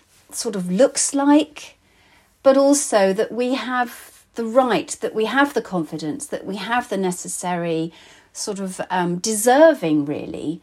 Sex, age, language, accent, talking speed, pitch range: female, 40-59, English, British, 145 wpm, 170-255 Hz